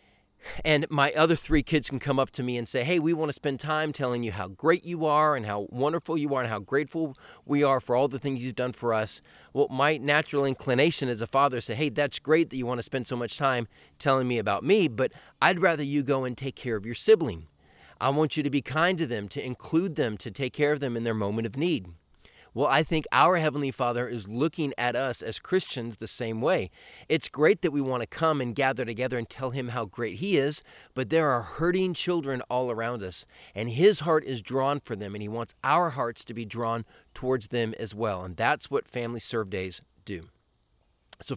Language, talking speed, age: English, 240 wpm, 30-49